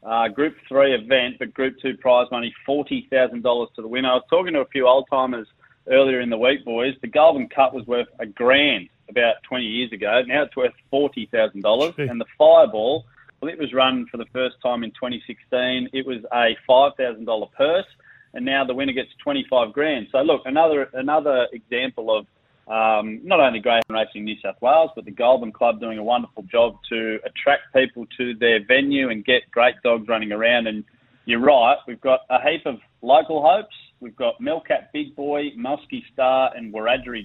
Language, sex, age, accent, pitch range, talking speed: English, male, 30-49, Australian, 115-135 Hz, 205 wpm